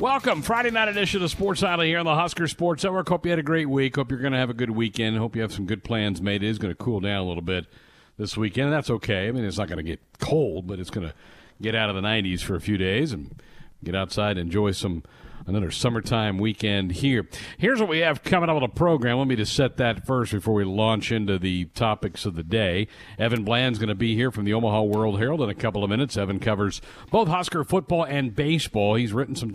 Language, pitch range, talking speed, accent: English, 100-130 Hz, 260 wpm, American